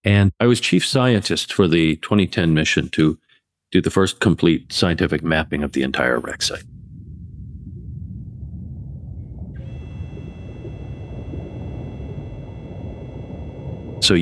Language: English